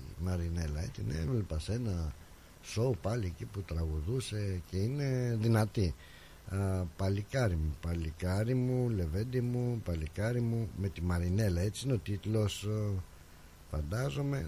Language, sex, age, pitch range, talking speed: Greek, male, 60-79, 90-125 Hz, 125 wpm